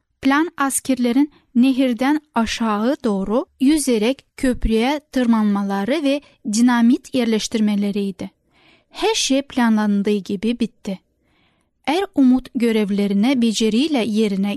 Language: Turkish